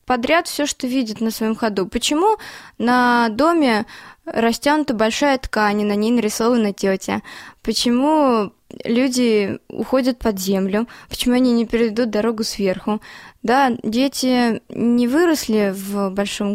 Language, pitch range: Russian, 210-260 Hz